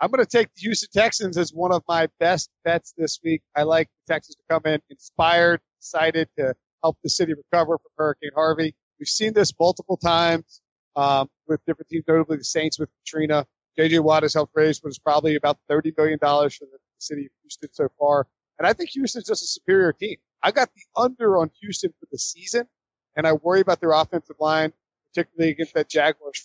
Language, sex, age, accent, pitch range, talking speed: English, male, 40-59, American, 150-175 Hz, 210 wpm